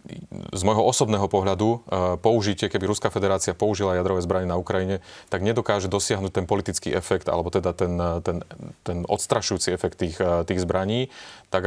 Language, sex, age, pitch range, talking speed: Slovak, male, 30-49, 90-100 Hz, 155 wpm